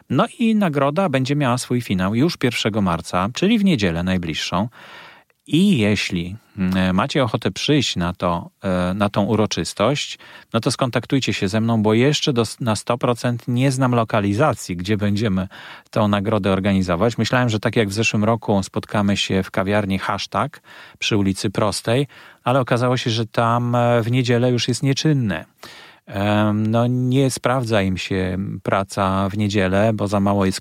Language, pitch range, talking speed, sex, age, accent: Polish, 100-125 Hz, 155 wpm, male, 40-59, native